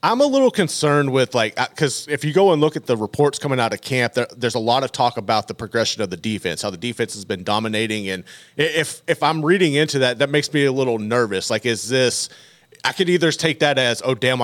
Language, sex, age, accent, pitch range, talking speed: English, male, 30-49, American, 120-155 Hz, 260 wpm